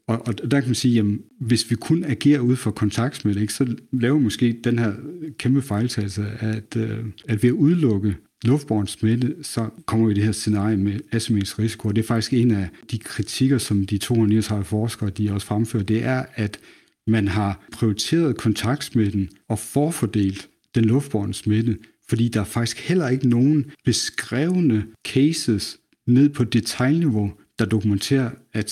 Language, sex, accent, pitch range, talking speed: Danish, male, native, 105-125 Hz, 165 wpm